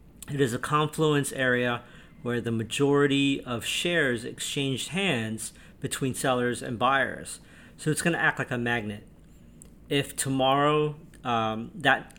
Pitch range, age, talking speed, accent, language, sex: 120-145 Hz, 40-59, 140 wpm, American, English, male